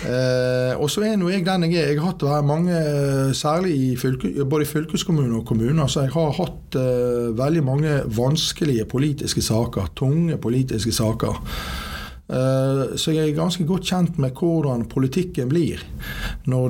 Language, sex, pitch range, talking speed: English, male, 115-145 Hz, 180 wpm